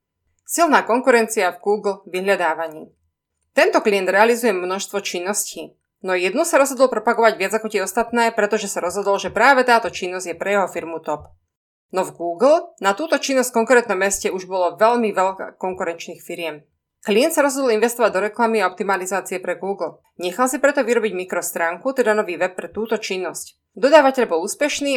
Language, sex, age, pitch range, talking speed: Slovak, female, 20-39, 180-230 Hz, 170 wpm